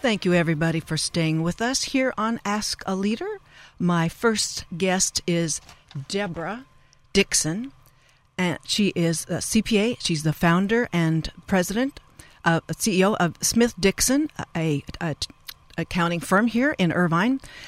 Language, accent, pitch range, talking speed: English, American, 165-200 Hz, 145 wpm